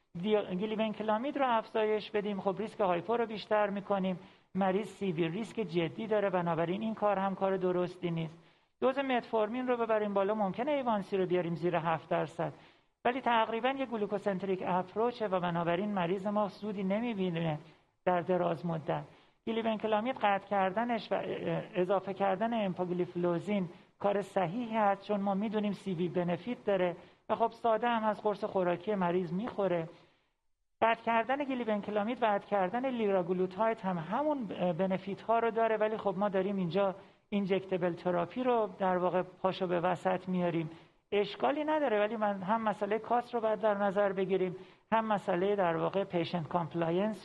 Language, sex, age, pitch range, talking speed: Persian, male, 40-59, 180-215 Hz, 155 wpm